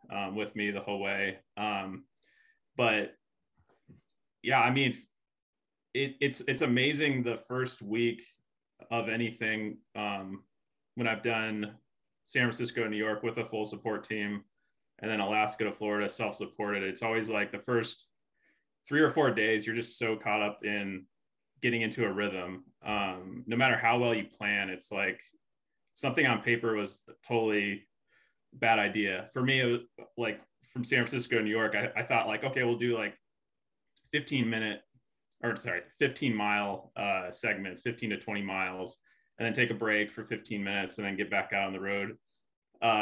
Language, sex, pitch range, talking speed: English, male, 105-120 Hz, 170 wpm